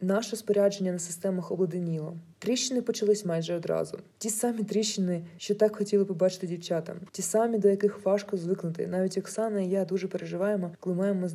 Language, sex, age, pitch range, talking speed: Ukrainian, female, 20-39, 180-210 Hz, 175 wpm